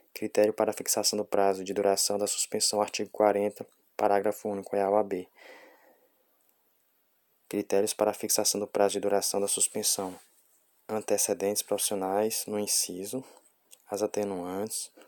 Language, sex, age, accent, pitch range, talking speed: Portuguese, male, 20-39, Brazilian, 95-105 Hz, 125 wpm